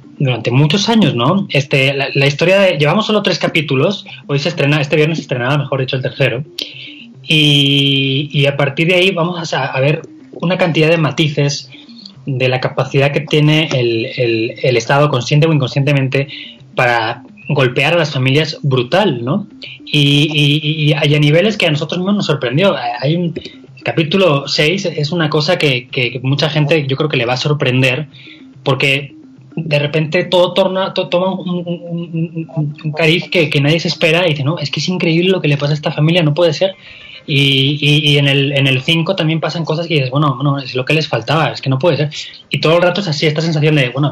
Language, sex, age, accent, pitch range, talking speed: Spanish, male, 20-39, Spanish, 140-165 Hz, 210 wpm